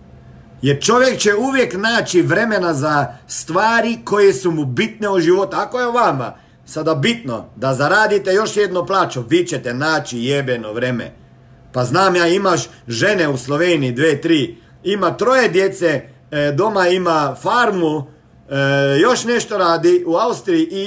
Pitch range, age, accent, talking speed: 145-210 Hz, 50-69, native, 150 wpm